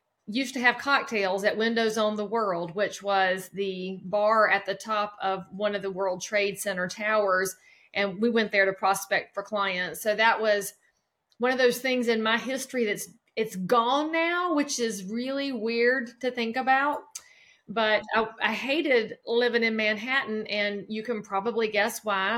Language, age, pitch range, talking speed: English, 30-49, 205-240 Hz, 180 wpm